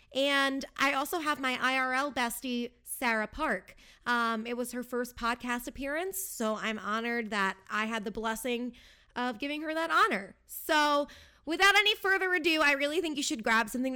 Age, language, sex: 20-39, English, female